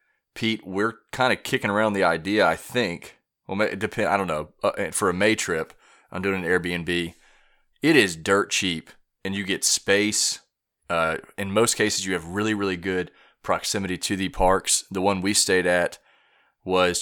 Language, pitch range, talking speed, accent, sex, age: English, 90-105 Hz, 185 wpm, American, male, 30-49